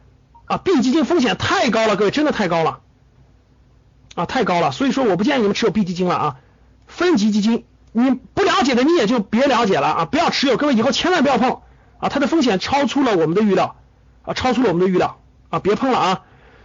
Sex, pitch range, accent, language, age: male, 220-315 Hz, native, Chinese, 50-69